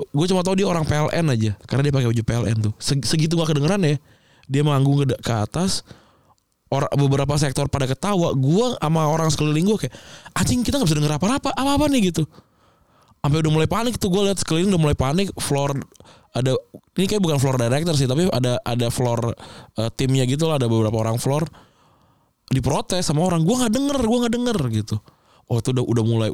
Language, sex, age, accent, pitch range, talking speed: Indonesian, male, 20-39, native, 115-160 Hz, 200 wpm